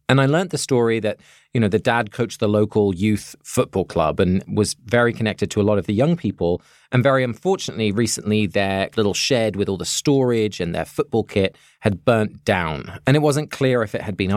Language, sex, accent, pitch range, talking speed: English, male, British, 105-135 Hz, 220 wpm